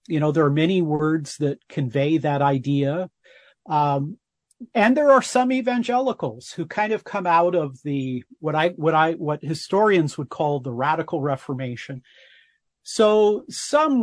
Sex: male